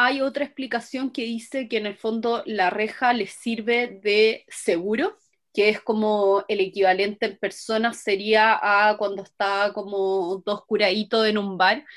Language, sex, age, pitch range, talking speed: Spanish, female, 20-39, 205-260 Hz, 160 wpm